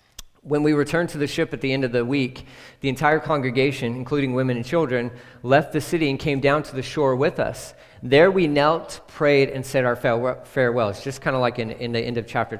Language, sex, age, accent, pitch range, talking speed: English, male, 40-59, American, 125-150 Hz, 235 wpm